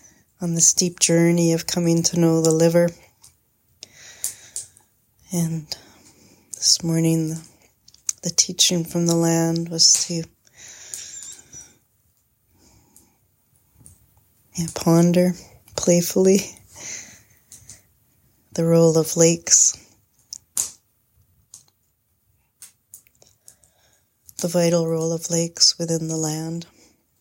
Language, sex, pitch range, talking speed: English, female, 130-170 Hz, 75 wpm